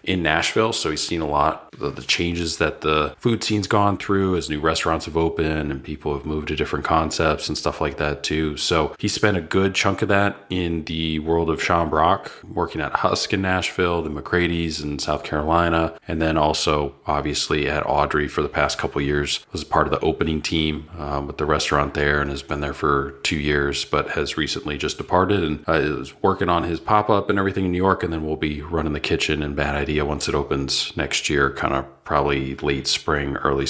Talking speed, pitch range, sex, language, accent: 225 wpm, 75-90 Hz, male, English, American